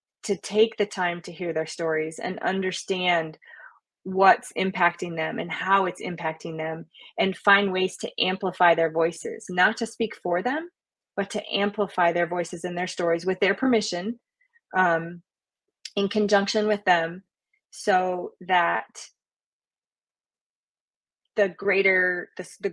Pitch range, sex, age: 175-210 Hz, female, 20-39